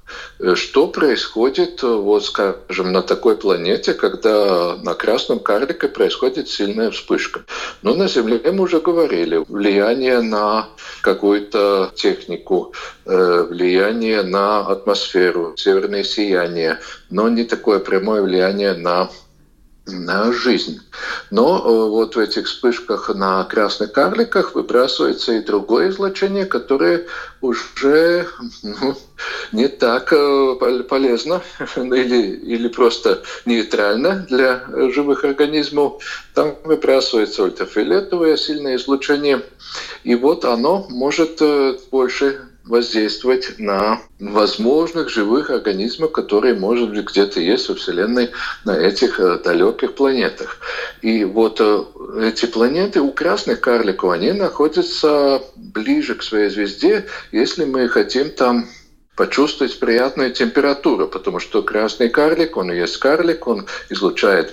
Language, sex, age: Russian, male, 50-69